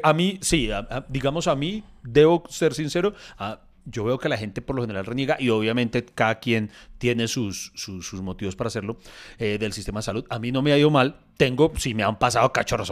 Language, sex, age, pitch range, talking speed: Spanish, male, 30-49, 115-155 Hz, 220 wpm